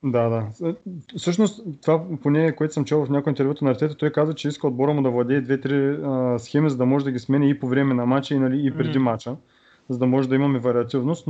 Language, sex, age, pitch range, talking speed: Bulgarian, male, 20-39, 125-145 Hz, 240 wpm